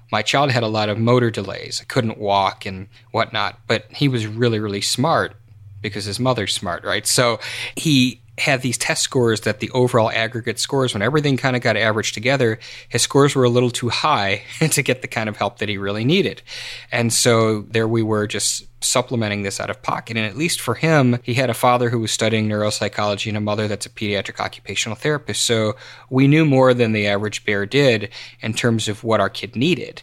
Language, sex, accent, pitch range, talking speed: English, male, American, 105-125 Hz, 215 wpm